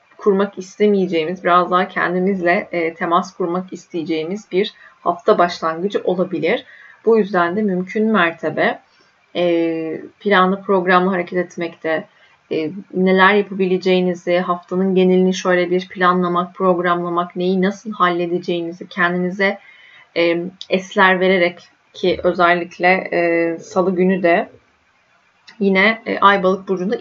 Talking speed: 110 wpm